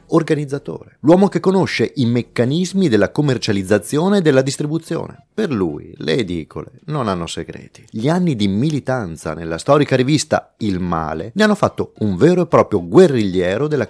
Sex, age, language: male, 30-49, Italian